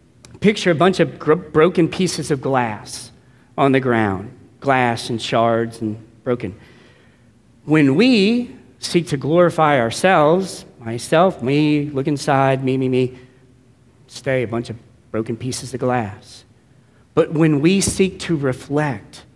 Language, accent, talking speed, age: English, American, 135 wpm, 40-59